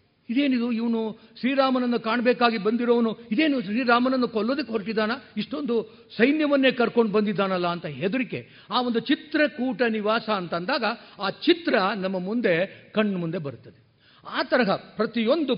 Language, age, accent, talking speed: Kannada, 50-69, native, 115 wpm